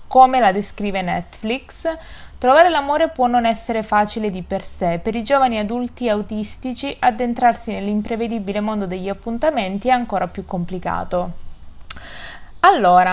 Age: 20-39